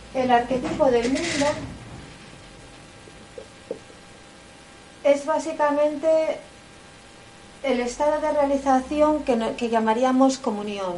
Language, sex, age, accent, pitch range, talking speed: Spanish, female, 40-59, Spanish, 230-285 Hz, 75 wpm